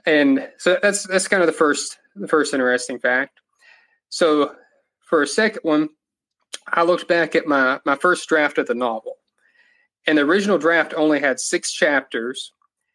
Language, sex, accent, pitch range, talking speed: English, male, American, 140-215 Hz, 165 wpm